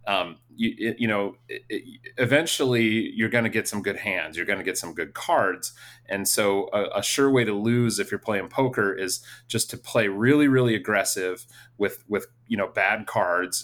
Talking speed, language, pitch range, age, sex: 195 wpm, English, 105-125 Hz, 30-49, male